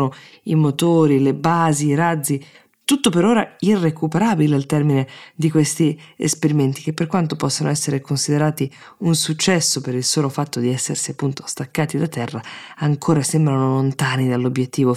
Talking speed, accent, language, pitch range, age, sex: 150 wpm, native, Italian, 130-160 Hz, 20-39, female